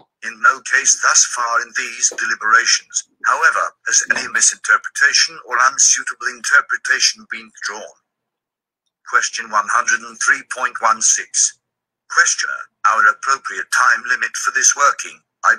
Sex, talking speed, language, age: male, 110 wpm, English, 50-69